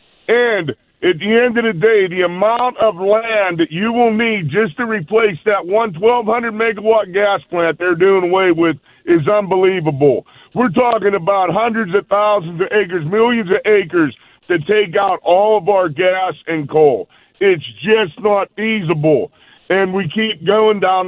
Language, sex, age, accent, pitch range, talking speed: English, male, 50-69, American, 175-225 Hz, 160 wpm